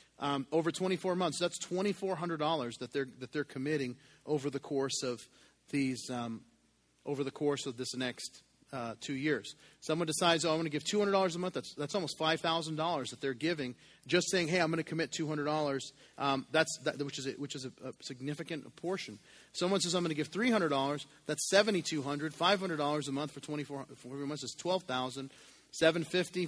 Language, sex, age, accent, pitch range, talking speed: English, male, 30-49, American, 135-170 Hz, 185 wpm